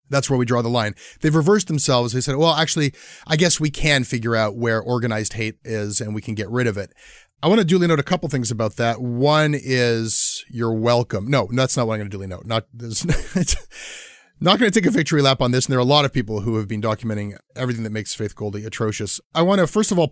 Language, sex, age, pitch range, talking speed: English, male, 30-49, 110-150 Hz, 255 wpm